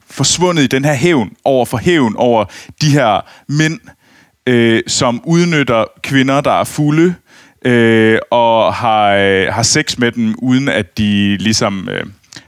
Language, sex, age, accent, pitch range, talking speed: Danish, male, 30-49, native, 115-140 Hz, 155 wpm